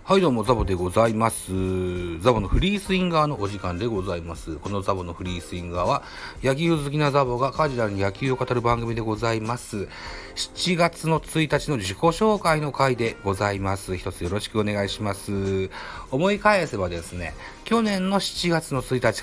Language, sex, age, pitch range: Japanese, male, 40-59, 95-125 Hz